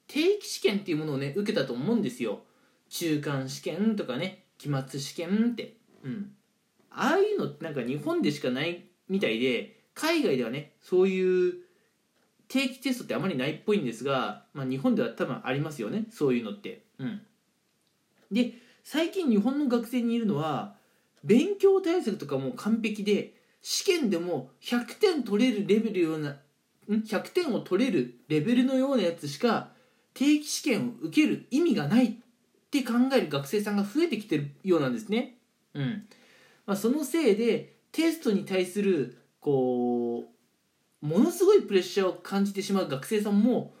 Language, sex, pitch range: Japanese, male, 175-250 Hz